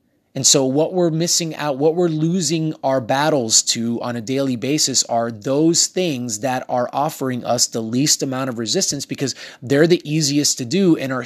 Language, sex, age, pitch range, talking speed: English, male, 30-49, 135-170 Hz, 190 wpm